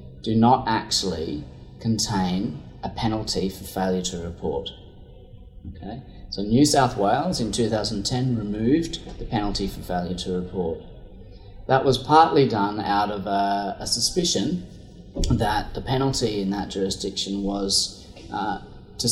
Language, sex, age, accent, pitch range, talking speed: English, male, 30-49, Australian, 95-120 Hz, 130 wpm